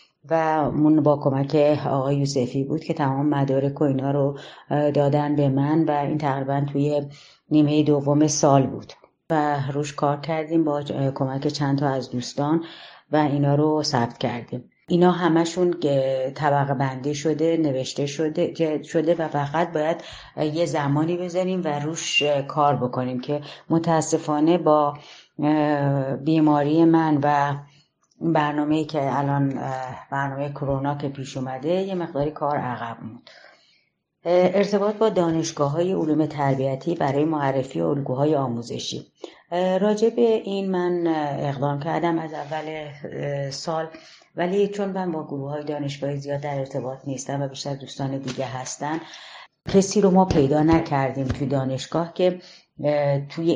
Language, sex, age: Persian, female, 30-49